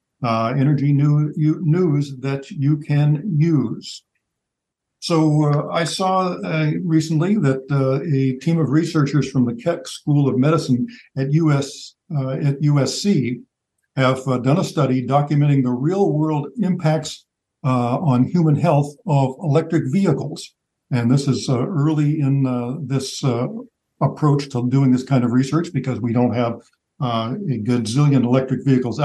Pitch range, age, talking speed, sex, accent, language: 125-150 Hz, 60-79, 155 wpm, male, American, English